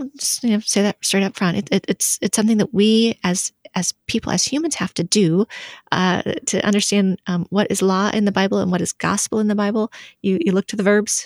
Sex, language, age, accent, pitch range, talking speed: female, English, 30-49, American, 180-210 Hz, 245 wpm